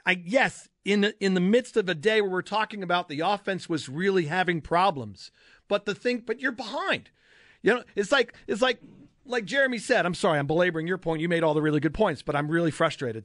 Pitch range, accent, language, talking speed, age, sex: 165-235 Hz, American, English, 235 wpm, 40-59, male